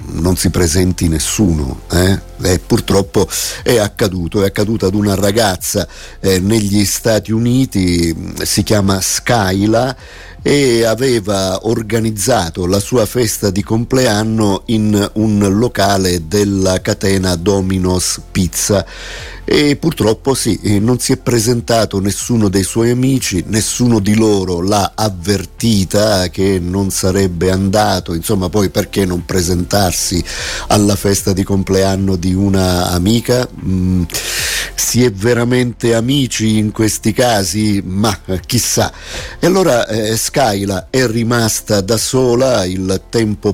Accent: native